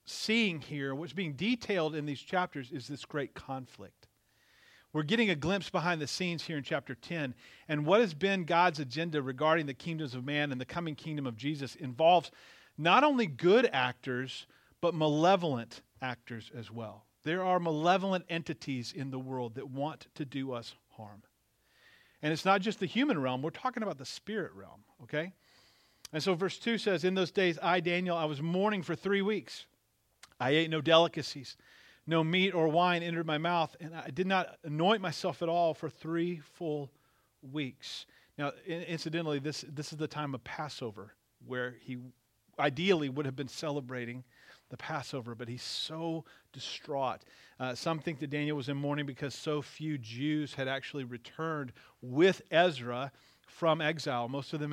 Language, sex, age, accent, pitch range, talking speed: English, male, 40-59, American, 135-170 Hz, 175 wpm